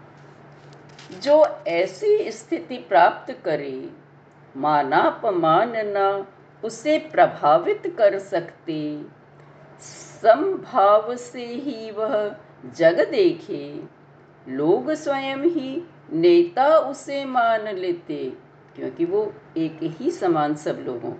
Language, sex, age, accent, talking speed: Hindi, female, 50-69, native, 90 wpm